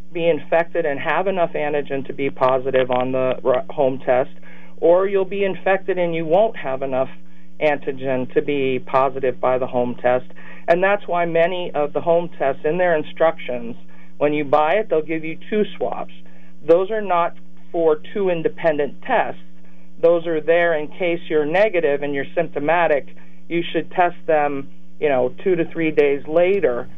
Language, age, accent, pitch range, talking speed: English, 50-69, American, 135-170 Hz, 175 wpm